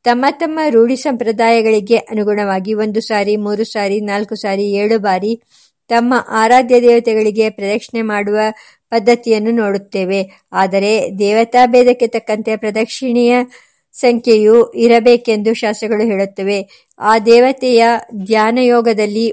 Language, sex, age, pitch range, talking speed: Kannada, male, 50-69, 215-245 Hz, 95 wpm